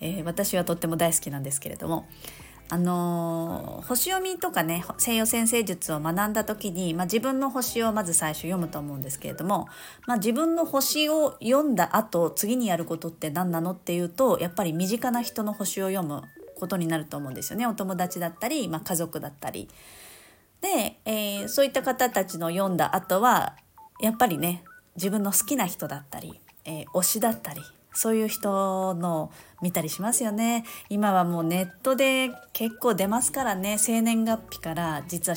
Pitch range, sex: 170-230 Hz, female